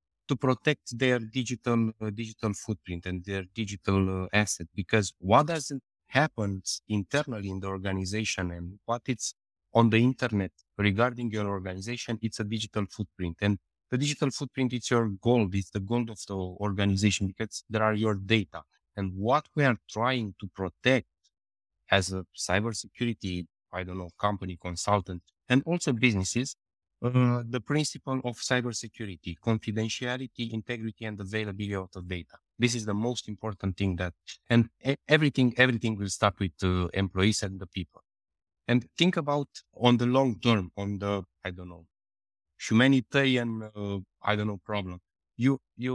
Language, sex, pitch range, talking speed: English, male, 95-125 Hz, 155 wpm